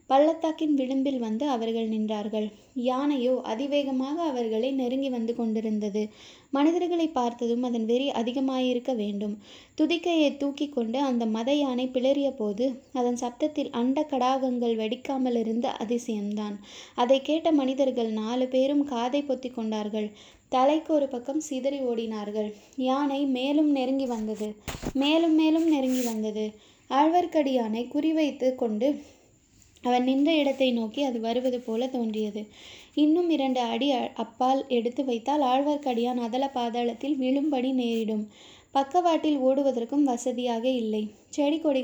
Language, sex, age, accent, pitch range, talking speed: Tamil, female, 20-39, native, 235-280 Hz, 110 wpm